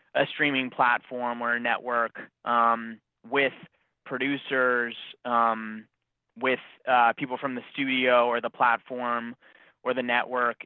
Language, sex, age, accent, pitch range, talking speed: English, male, 20-39, American, 120-135 Hz, 125 wpm